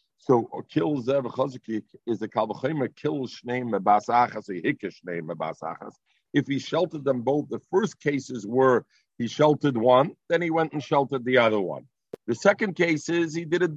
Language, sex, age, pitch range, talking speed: English, male, 50-69, 120-155 Hz, 170 wpm